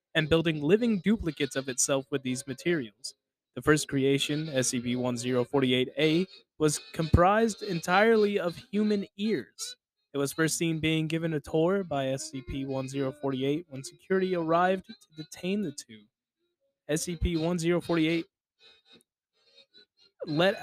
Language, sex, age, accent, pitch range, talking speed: English, male, 20-39, American, 140-190 Hz, 110 wpm